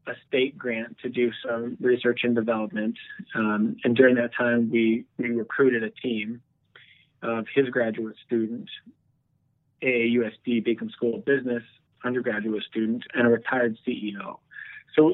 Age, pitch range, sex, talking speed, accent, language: 30-49, 115-130 Hz, male, 145 wpm, American, English